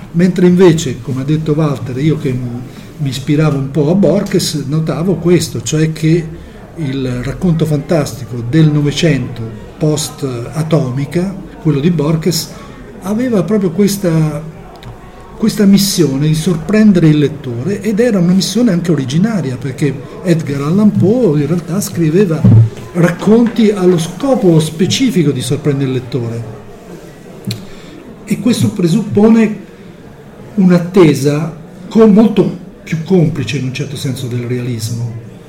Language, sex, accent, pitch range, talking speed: Italian, male, native, 140-180 Hz, 120 wpm